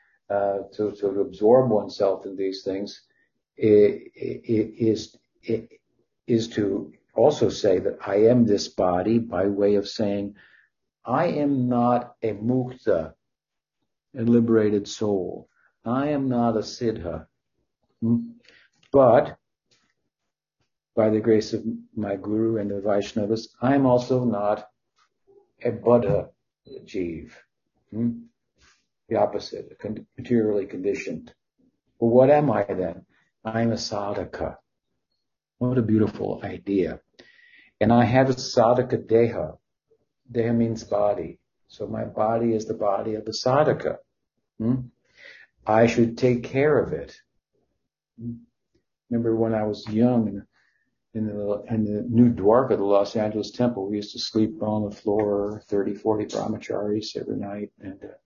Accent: American